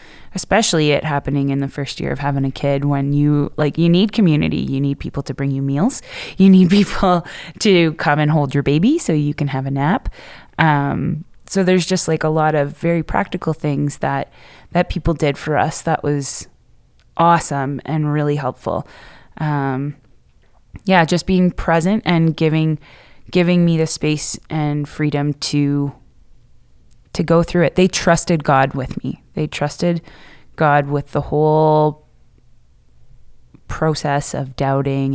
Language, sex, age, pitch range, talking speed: English, female, 20-39, 140-175 Hz, 160 wpm